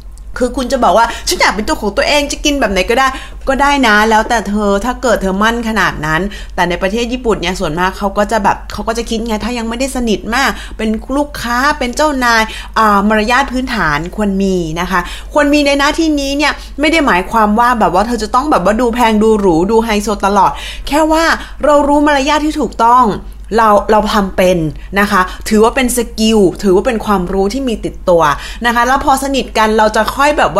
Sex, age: female, 20-39